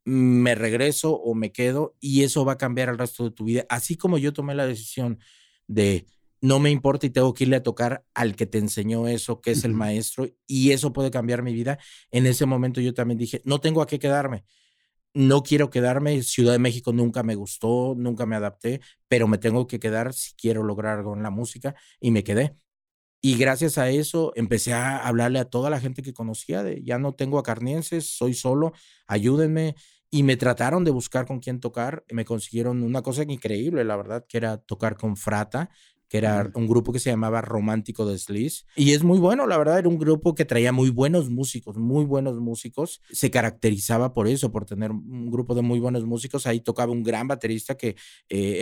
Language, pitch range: English, 115-135 Hz